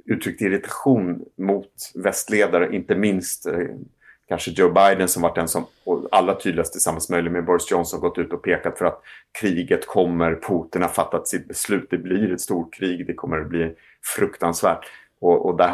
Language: Swedish